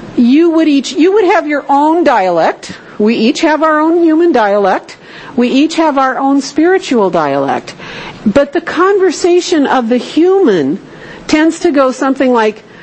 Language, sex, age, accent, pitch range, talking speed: English, female, 50-69, American, 210-280 Hz, 160 wpm